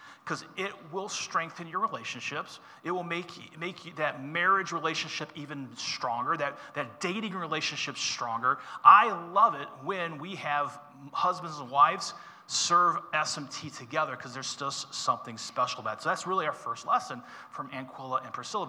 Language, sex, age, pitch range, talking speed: English, male, 30-49, 135-185 Hz, 165 wpm